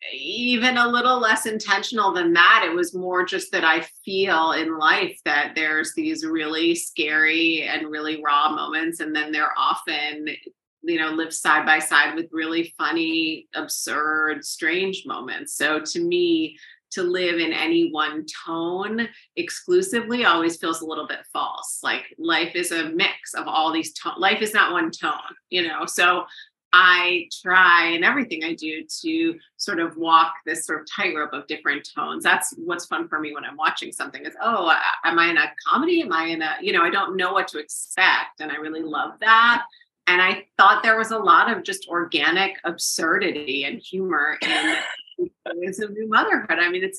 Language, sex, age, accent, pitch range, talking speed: English, female, 30-49, American, 160-240 Hz, 185 wpm